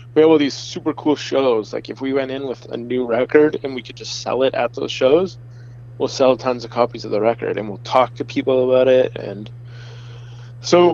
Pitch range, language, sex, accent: 120-130 Hz, English, male, American